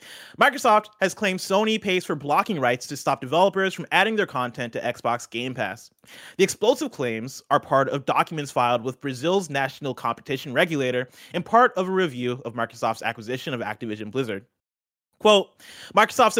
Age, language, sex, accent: 30-49, English, male, American